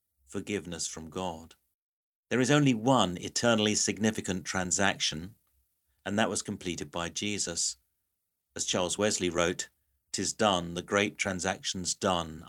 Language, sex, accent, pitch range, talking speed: English, male, British, 85-105 Hz, 125 wpm